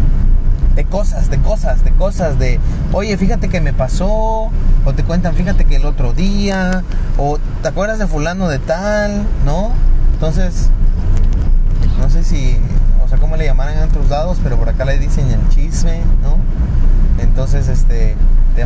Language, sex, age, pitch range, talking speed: Spanish, male, 30-49, 110-150 Hz, 165 wpm